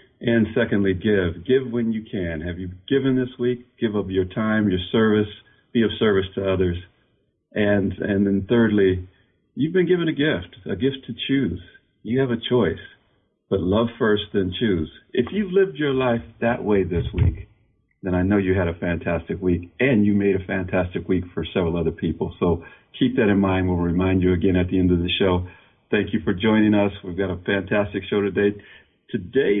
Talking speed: 200 wpm